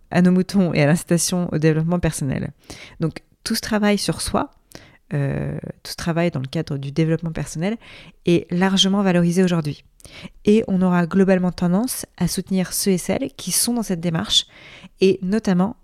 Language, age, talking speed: French, 20-39, 175 wpm